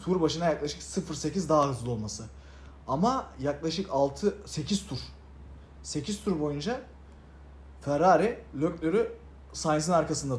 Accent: native